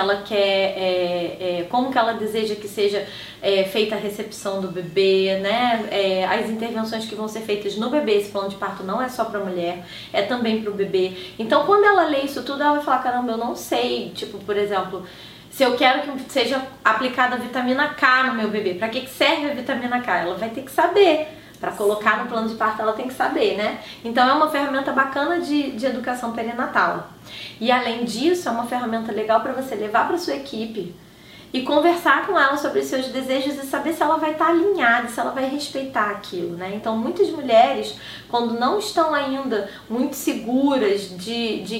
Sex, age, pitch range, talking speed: female, 20-39, 205-265 Hz, 205 wpm